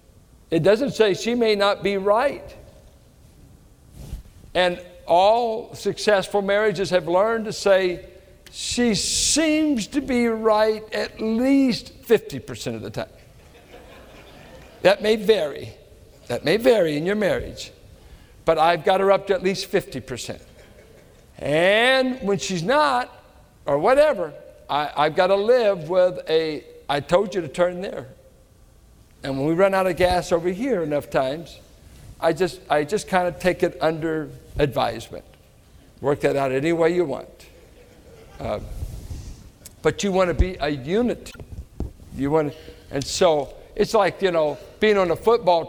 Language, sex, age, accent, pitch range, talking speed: English, male, 60-79, American, 150-205 Hz, 145 wpm